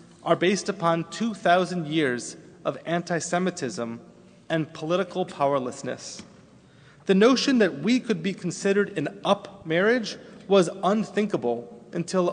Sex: male